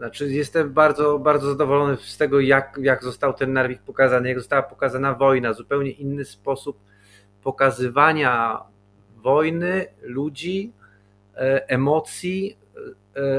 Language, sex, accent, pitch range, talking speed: Polish, male, native, 125-155 Hz, 110 wpm